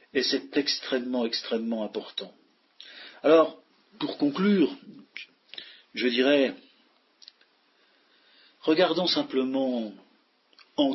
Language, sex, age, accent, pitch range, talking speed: French, male, 50-69, French, 125-195 Hz, 70 wpm